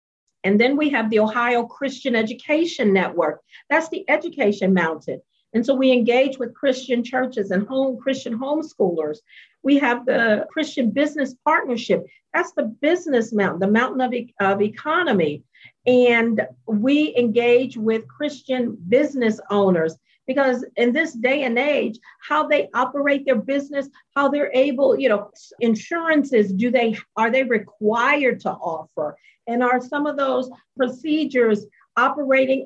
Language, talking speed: English, 140 wpm